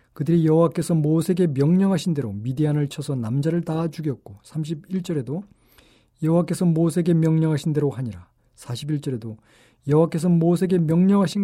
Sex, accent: male, native